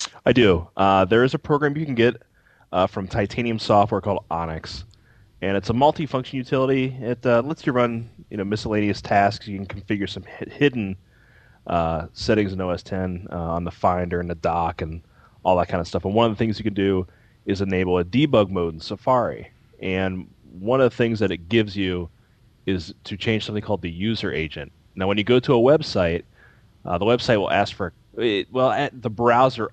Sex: male